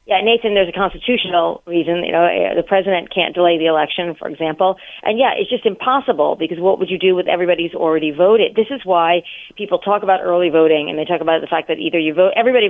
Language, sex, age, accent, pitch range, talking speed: English, female, 40-59, American, 165-210 Hz, 235 wpm